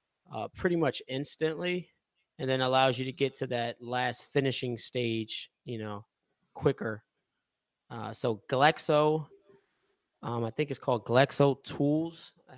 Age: 20-39